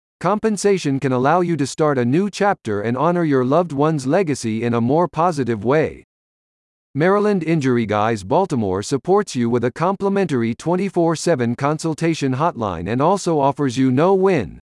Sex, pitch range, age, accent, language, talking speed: male, 125-175 Hz, 50-69, American, English, 155 wpm